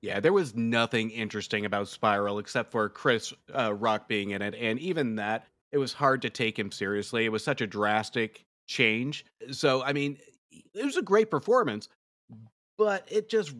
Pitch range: 115-160 Hz